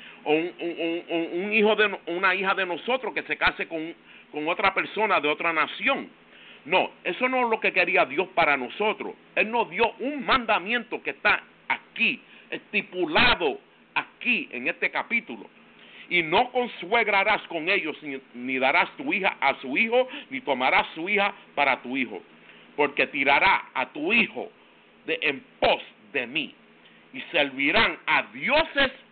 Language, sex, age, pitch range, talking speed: English, male, 50-69, 180-250 Hz, 155 wpm